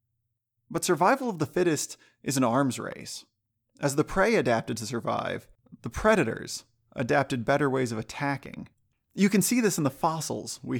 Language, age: English, 20-39